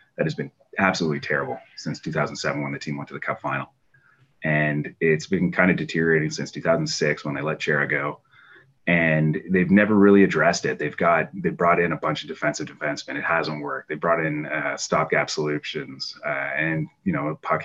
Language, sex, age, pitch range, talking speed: English, male, 30-49, 75-95 Hz, 195 wpm